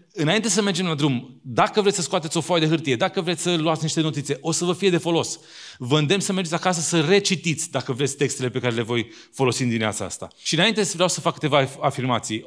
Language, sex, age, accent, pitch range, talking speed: Romanian, male, 30-49, native, 140-185 Hz, 240 wpm